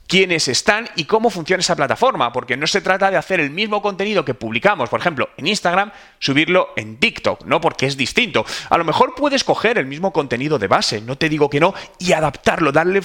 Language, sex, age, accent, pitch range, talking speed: Spanish, male, 30-49, Spanish, 145-205 Hz, 215 wpm